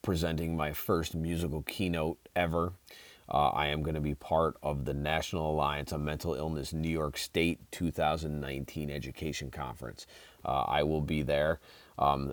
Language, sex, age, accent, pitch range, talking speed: English, male, 30-49, American, 75-85 Hz, 155 wpm